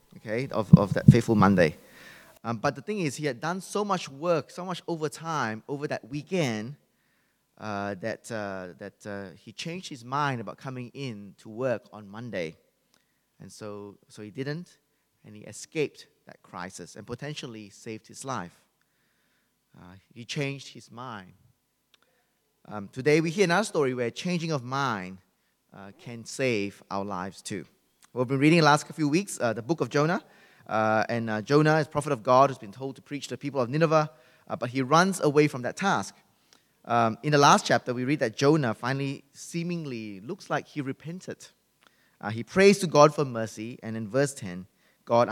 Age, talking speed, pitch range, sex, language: 20-39, 190 wpm, 110-150 Hz, male, English